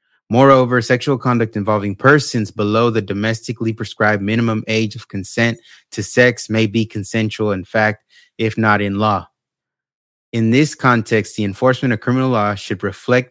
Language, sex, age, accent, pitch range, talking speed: English, male, 20-39, American, 105-130 Hz, 155 wpm